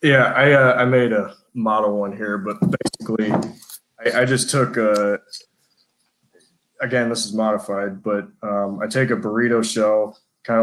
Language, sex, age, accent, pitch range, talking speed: English, male, 20-39, American, 105-125 Hz, 160 wpm